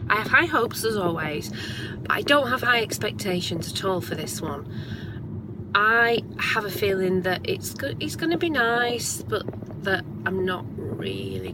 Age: 30-49